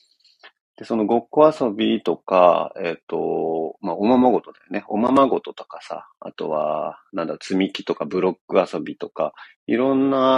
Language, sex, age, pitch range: Japanese, male, 40-59, 95-140 Hz